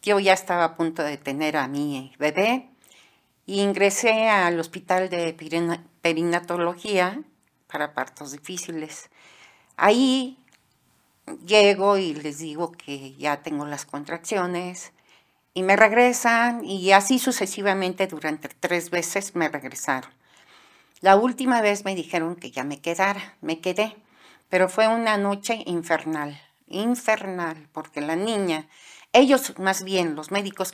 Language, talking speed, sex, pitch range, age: Spanish, 130 wpm, female, 160-200 Hz, 40-59